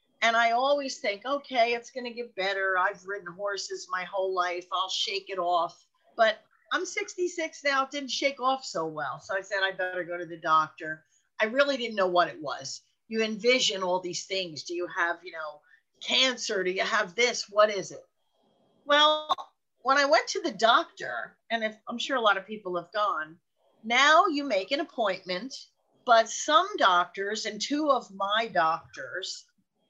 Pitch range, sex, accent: 190-280 Hz, female, American